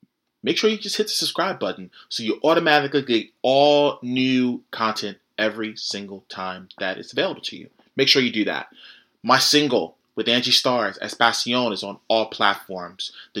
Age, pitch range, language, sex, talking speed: 30-49, 110-145 Hz, English, male, 180 wpm